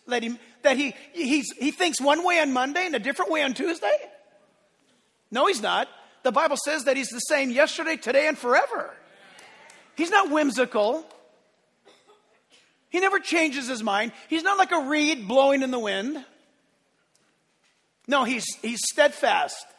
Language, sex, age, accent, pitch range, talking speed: English, male, 40-59, American, 240-295 Hz, 160 wpm